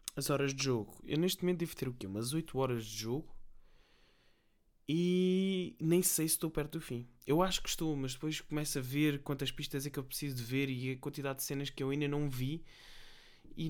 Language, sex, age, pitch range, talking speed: Portuguese, male, 20-39, 120-145 Hz, 230 wpm